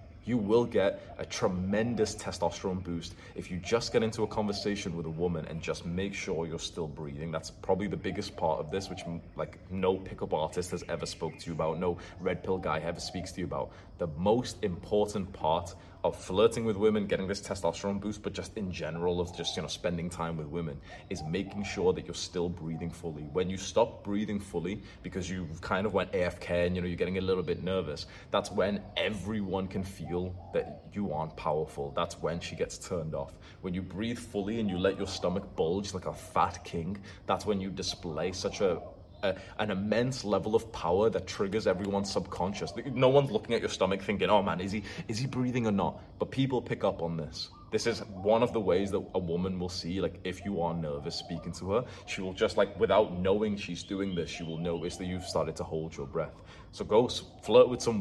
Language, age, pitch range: English, 20-39, 85-105 Hz